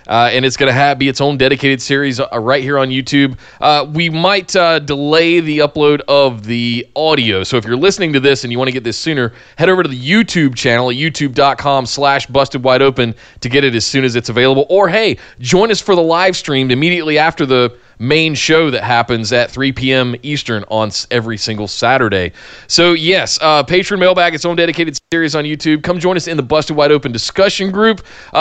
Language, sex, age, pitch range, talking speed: English, male, 20-39, 120-155 Hz, 220 wpm